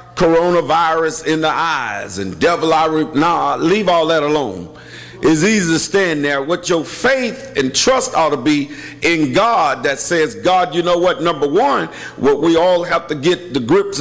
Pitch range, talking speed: 155-205 Hz, 190 wpm